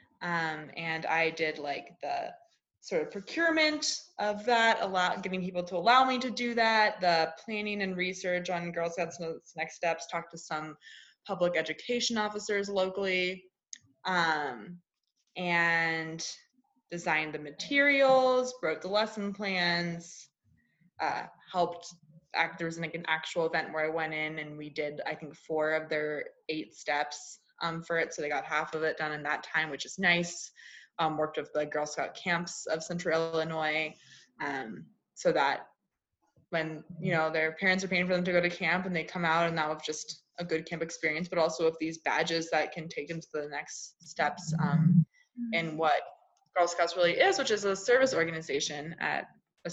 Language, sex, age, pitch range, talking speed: English, female, 20-39, 160-185 Hz, 180 wpm